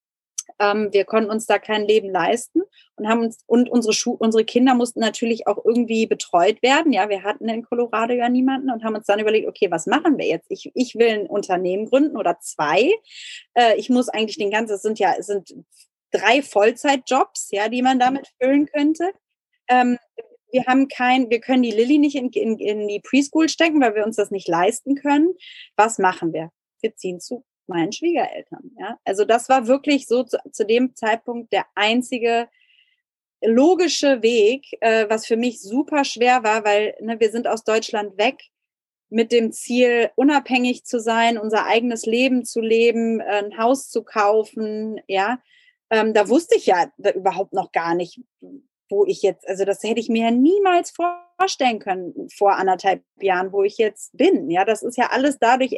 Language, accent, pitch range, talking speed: German, German, 215-270 Hz, 180 wpm